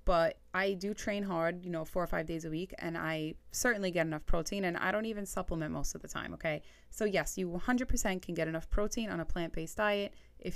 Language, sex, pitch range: English, female, 165-205 Hz